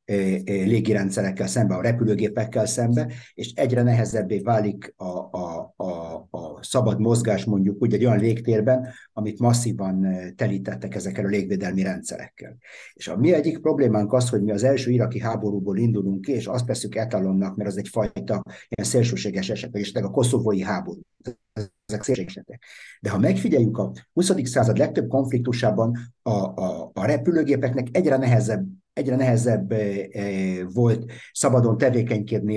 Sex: male